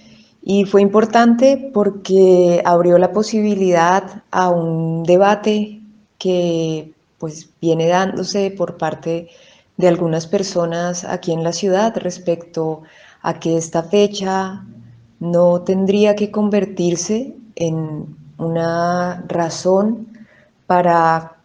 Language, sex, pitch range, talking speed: Spanish, female, 170-195 Hz, 100 wpm